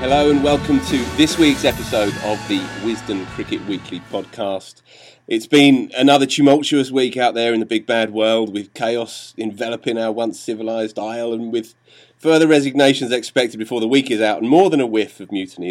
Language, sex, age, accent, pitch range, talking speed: English, male, 30-49, British, 105-135 Hz, 185 wpm